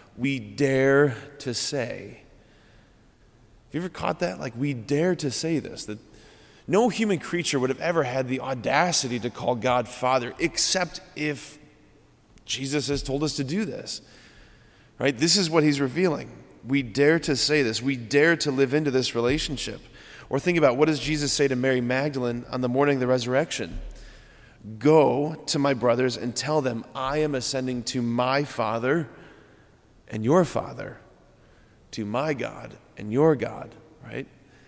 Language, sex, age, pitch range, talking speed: English, male, 30-49, 120-145 Hz, 165 wpm